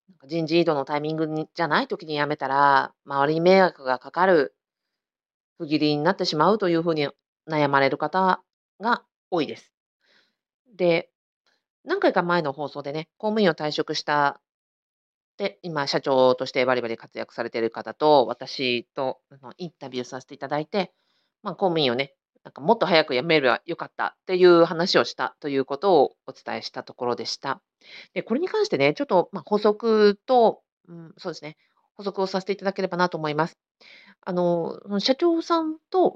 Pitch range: 145-205 Hz